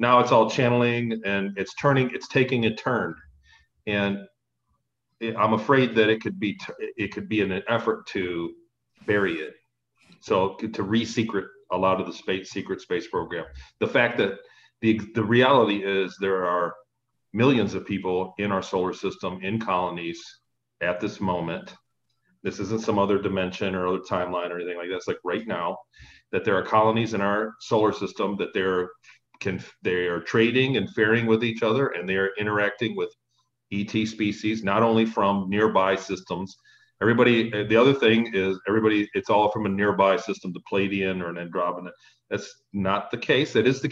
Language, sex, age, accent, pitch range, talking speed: English, male, 40-59, American, 95-115 Hz, 175 wpm